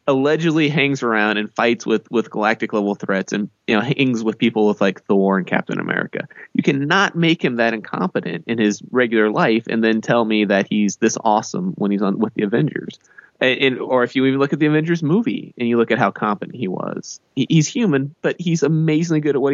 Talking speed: 225 wpm